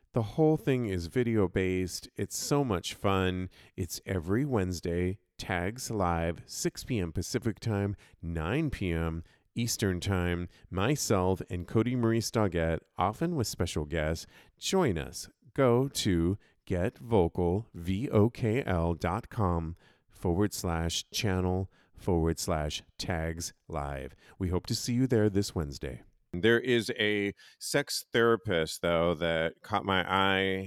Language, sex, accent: English, male, American